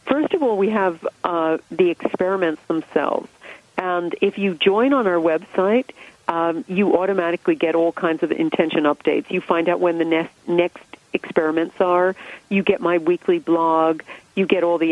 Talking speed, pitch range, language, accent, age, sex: 175 wpm, 160-195 Hz, English, American, 40-59, female